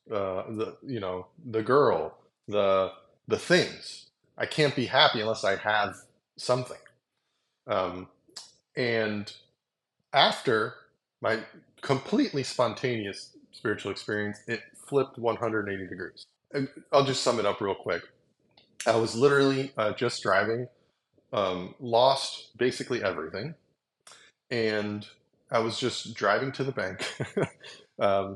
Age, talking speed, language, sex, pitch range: 30-49, 120 wpm, English, male, 105-135 Hz